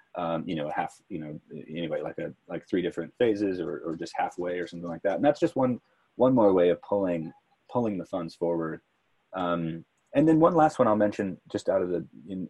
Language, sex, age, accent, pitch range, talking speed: English, male, 30-49, American, 85-105 Hz, 225 wpm